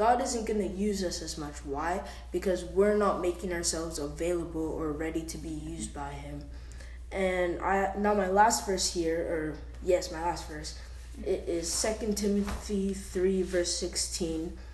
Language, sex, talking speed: English, female, 165 wpm